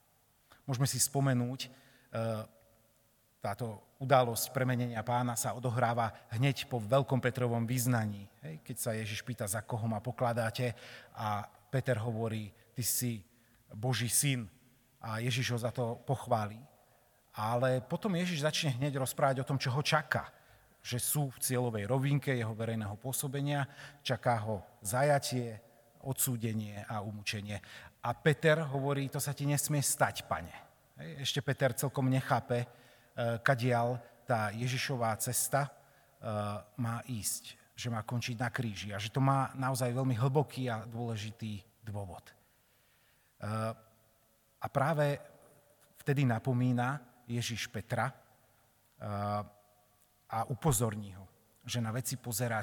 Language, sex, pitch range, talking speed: Slovak, male, 110-130 Hz, 120 wpm